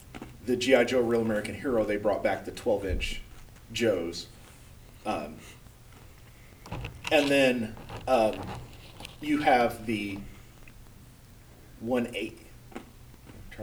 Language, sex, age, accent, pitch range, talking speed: English, male, 40-59, American, 110-140 Hz, 95 wpm